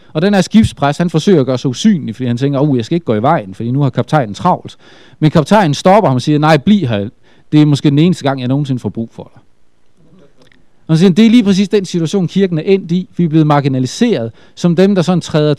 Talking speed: 260 wpm